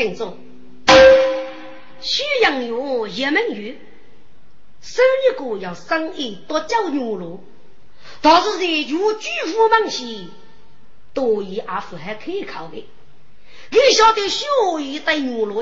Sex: female